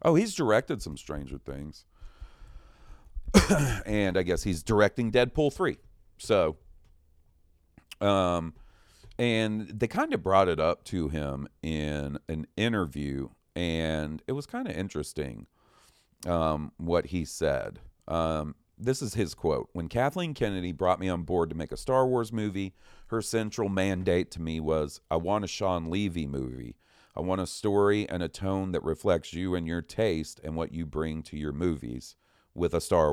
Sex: male